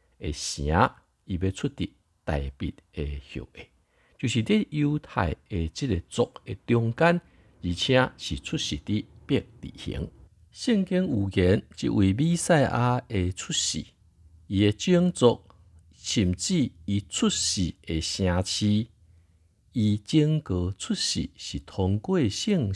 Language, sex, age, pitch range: Chinese, male, 60-79, 85-130 Hz